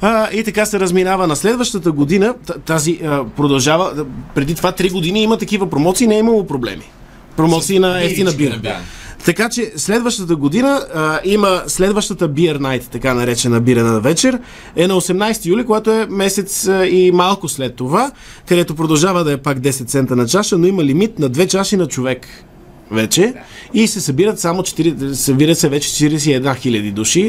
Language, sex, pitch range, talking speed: Bulgarian, male, 130-185 Hz, 185 wpm